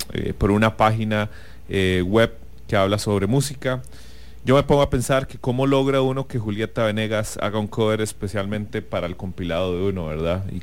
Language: English